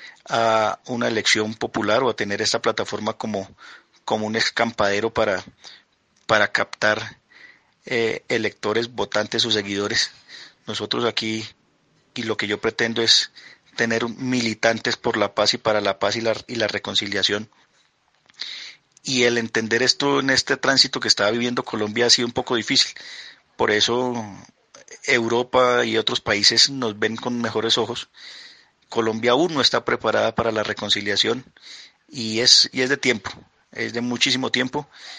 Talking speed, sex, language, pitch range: 150 wpm, male, Spanish, 105-120 Hz